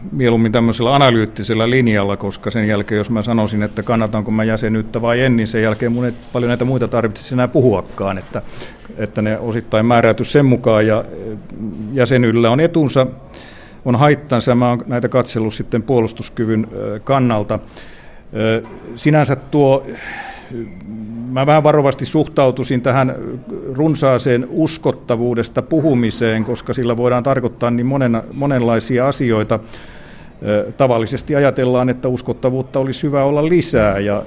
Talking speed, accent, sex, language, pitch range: 125 wpm, native, male, Finnish, 110-130 Hz